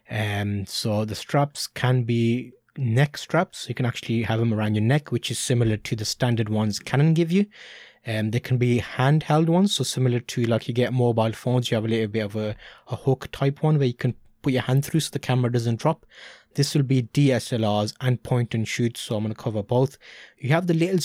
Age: 20-39